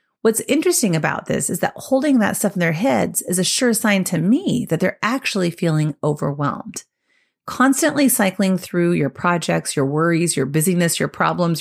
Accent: American